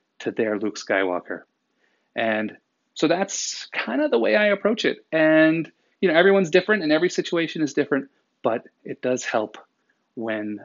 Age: 30-49